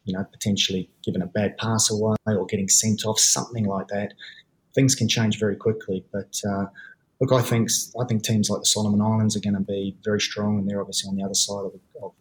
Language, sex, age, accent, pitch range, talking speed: English, male, 20-39, Australian, 100-110 Hz, 235 wpm